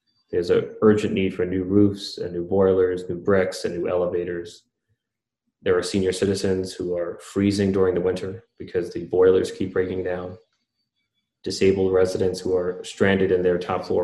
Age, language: 30-49, English